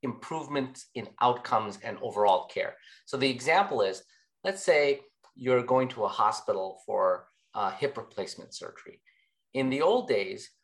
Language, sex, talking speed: English, male, 145 wpm